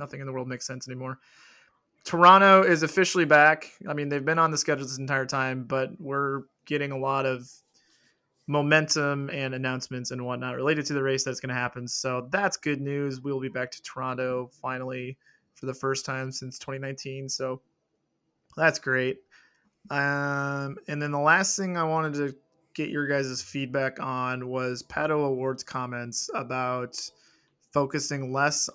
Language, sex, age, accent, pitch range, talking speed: English, male, 20-39, American, 130-150 Hz, 165 wpm